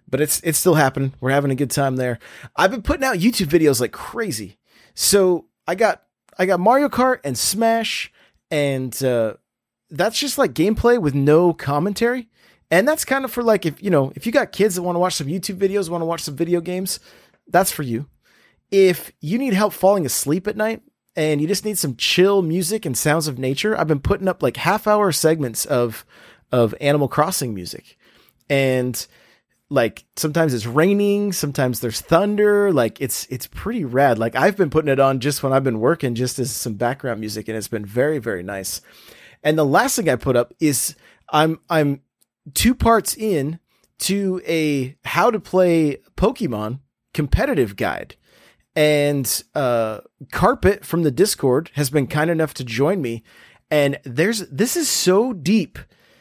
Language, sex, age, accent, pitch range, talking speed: English, male, 30-49, American, 135-195 Hz, 185 wpm